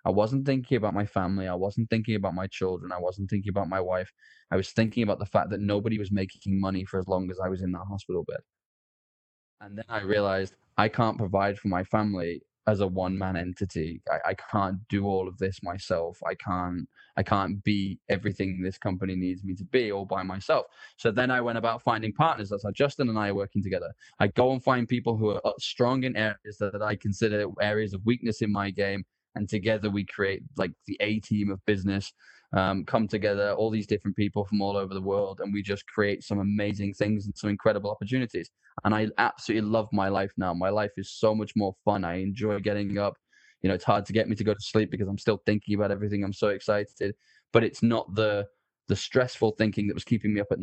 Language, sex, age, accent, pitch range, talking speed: English, male, 10-29, British, 95-105 Hz, 230 wpm